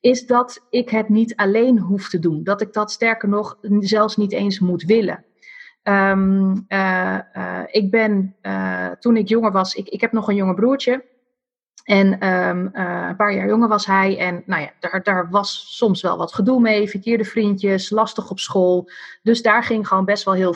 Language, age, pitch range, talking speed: Dutch, 30-49, 185-235 Hz, 195 wpm